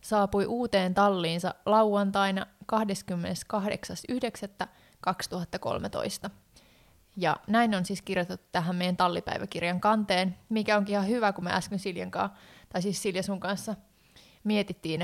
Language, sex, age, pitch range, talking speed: Finnish, female, 20-39, 185-215 Hz, 115 wpm